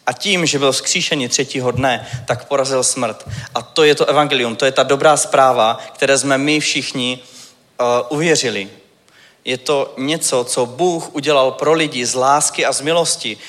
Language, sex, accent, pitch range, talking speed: Czech, male, native, 130-150 Hz, 175 wpm